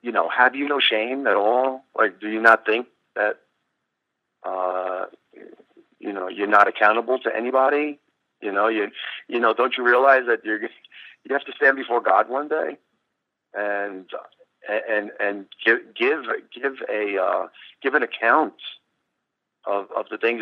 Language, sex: English, male